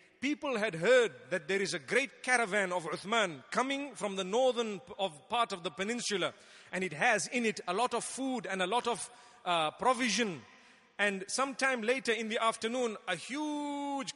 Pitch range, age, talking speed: 200-250 Hz, 40-59, 180 wpm